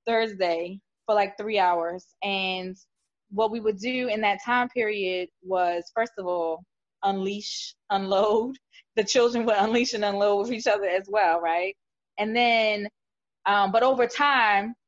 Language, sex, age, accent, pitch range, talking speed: English, female, 20-39, American, 180-215 Hz, 155 wpm